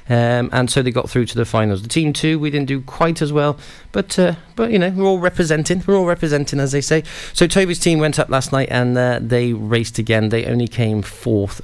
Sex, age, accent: male, 30-49, British